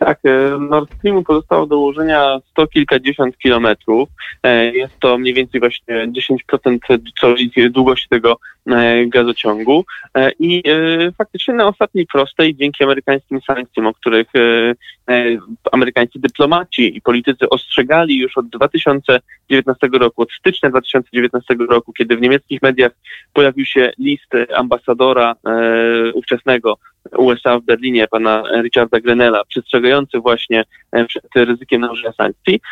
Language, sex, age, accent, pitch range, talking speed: Polish, male, 20-39, native, 120-145 Hz, 125 wpm